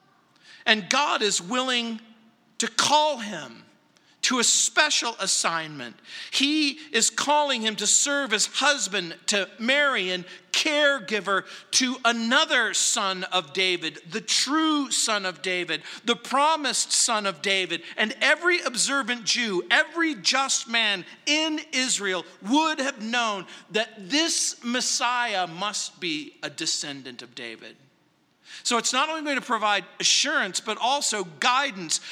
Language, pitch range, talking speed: English, 195-280 Hz, 130 wpm